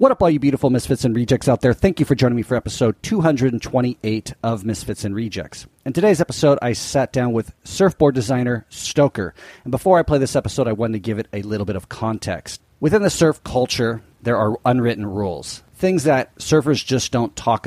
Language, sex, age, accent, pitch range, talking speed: English, male, 40-59, American, 110-130 Hz, 210 wpm